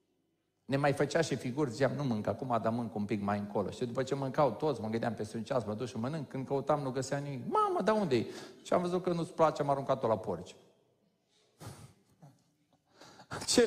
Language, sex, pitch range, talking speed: Romanian, male, 125-180 Hz, 215 wpm